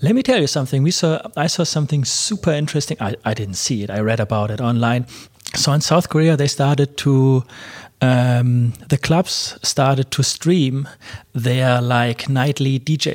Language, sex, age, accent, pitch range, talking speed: English, male, 30-49, German, 120-150 Hz, 180 wpm